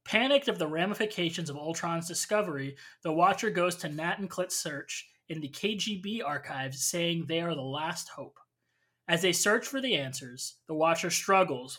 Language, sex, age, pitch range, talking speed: English, male, 20-39, 145-185 Hz, 175 wpm